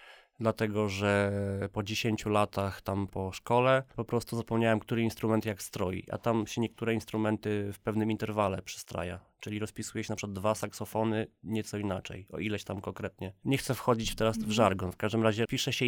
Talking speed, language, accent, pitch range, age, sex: 180 wpm, Polish, native, 100-115 Hz, 20-39, male